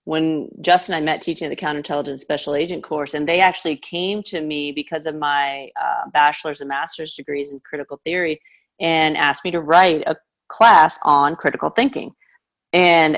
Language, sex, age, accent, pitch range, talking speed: English, female, 30-49, American, 150-180 Hz, 180 wpm